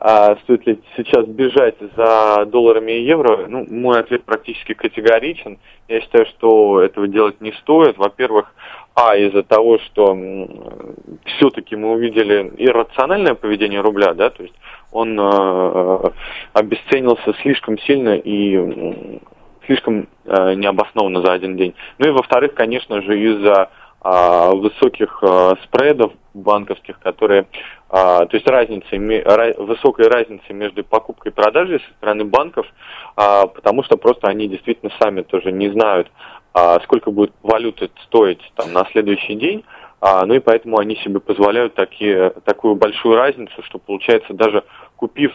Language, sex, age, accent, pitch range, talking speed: Russian, male, 20-39, native, 95-115 Hz, 130 wpm